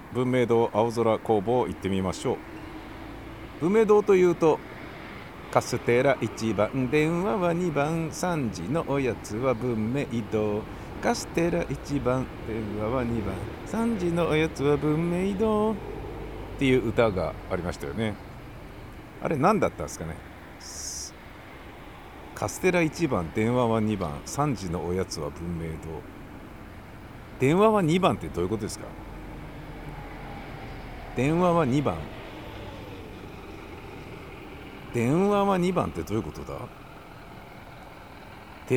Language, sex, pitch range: Japanese, male, 95-155 Hz